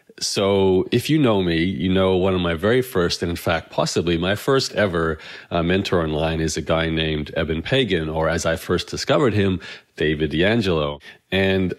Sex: male